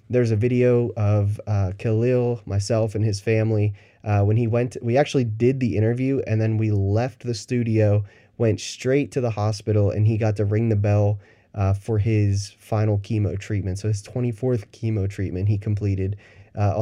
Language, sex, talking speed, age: English, male, 180 wpm, 20-39